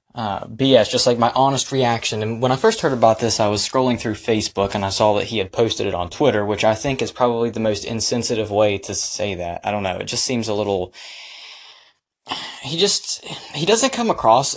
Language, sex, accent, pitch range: English, male, American, 110-145 Hz